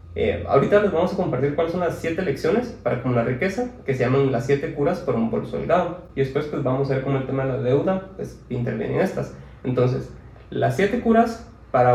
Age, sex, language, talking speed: 30-49, male, Spanish, 225 wpm